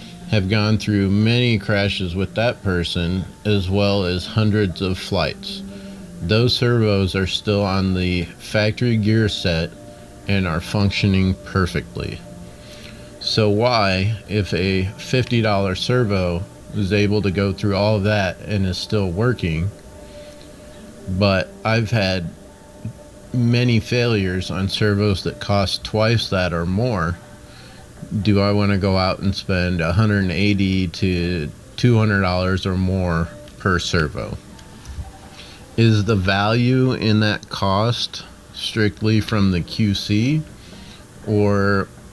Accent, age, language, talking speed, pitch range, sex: American, 40-59, English, 120 wpm, 95-110 Hz, male